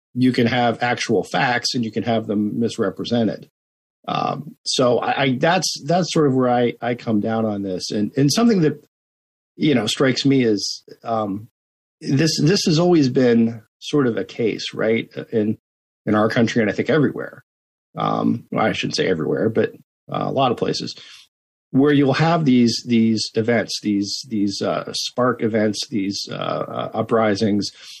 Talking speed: 175 wpm